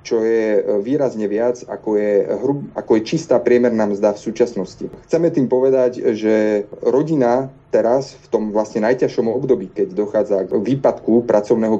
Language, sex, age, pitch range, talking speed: Slovak, male, 30-49, 110-130 Hz, 155 wpm